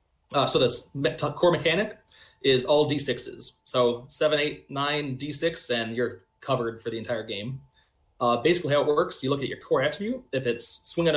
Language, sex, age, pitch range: English, male, 30-49, 125-165 Hz